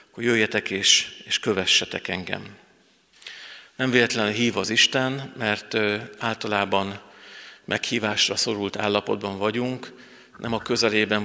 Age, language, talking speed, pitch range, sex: 50-69, Hungarian, 105 wpm, 100-115 Hz, male